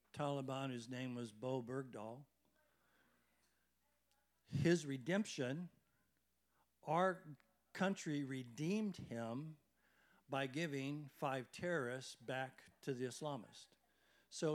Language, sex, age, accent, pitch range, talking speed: English, male, 60-79, American, 125-165 Hz, 85 wpm